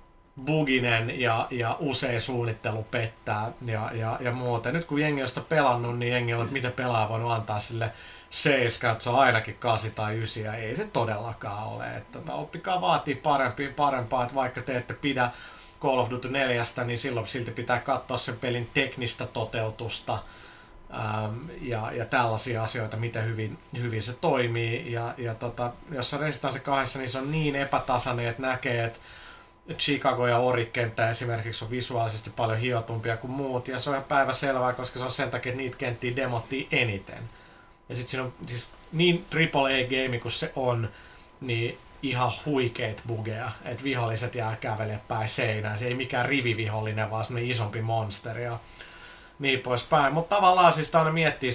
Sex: male